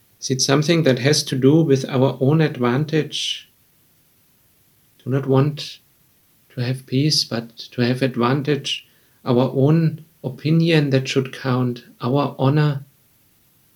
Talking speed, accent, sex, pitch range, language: 125 wpm, German, male, 130-150 Hz, English